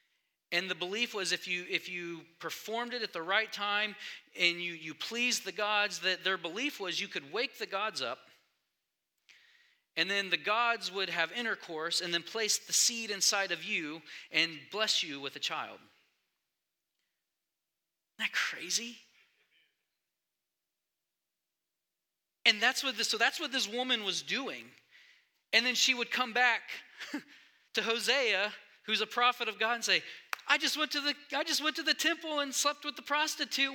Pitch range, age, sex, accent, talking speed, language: 190-290 Hz, 30-49, male, American, 165 wpm, English